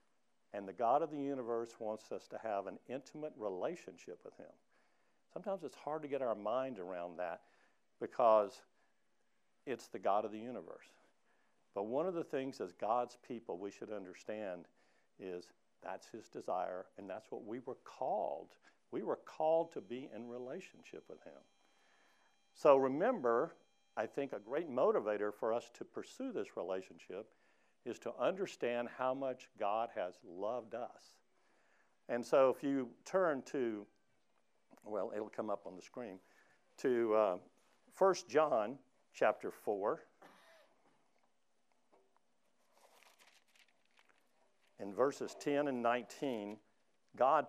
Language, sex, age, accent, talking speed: English, male, 60-79, American, 135 wpm